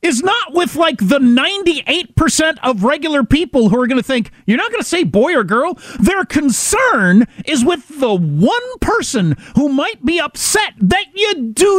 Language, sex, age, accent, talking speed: English, male, 40-59, American, 175 wpm